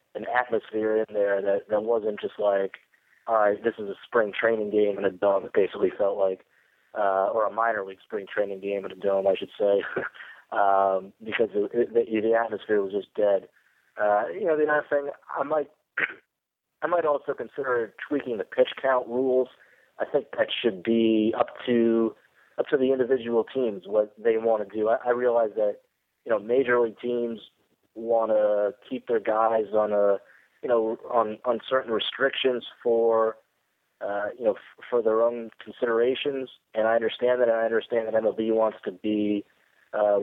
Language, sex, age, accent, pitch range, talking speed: English, male, 30-49, American, 105-120 Hz, 185 wpm